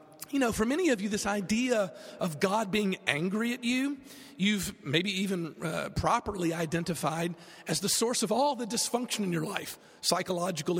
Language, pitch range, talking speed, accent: English, 160-205 Hz, 170 wpm, American